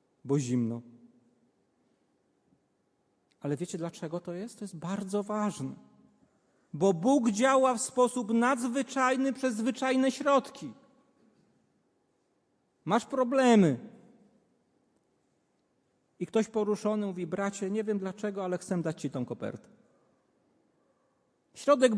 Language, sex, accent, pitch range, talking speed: Polish, male, native, 175-255 Hz, 100 wpm